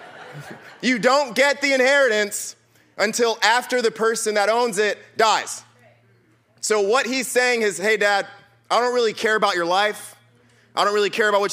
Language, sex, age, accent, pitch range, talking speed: English, male, 30-49, American, 180-215 Hz, 170 wpm